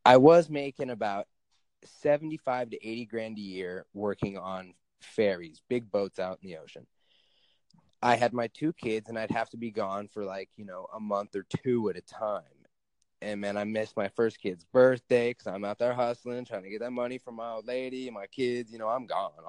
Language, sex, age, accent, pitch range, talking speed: English, male, 20-39, American, 105-130 Hz, 215 wpm